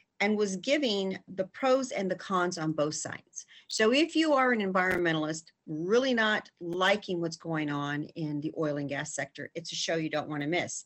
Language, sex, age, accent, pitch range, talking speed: English, female, 50-69, American, 155-230 Hz, 205 wpm